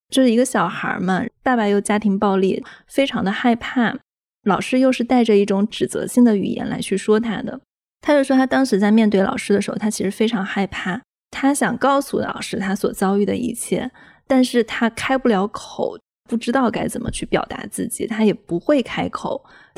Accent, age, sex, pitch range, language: native, 20-39, female, 195-245 Hz, Chinese